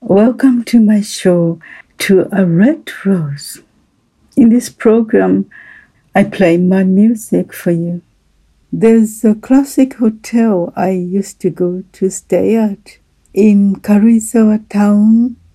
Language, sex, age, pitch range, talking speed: English, female, 60-79, 190-230 Hz, 120 wpm